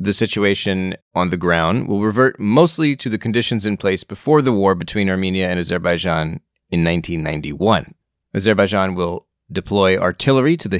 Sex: male